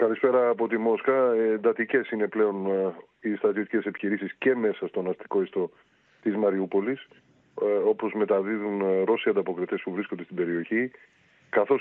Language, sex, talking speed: Greek, male, 130 wpm